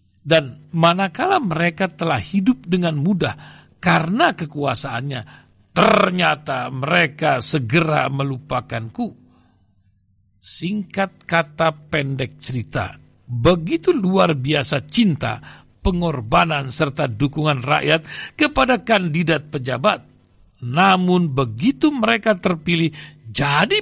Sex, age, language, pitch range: male, 60-79, Indonesian, 130-200 Hz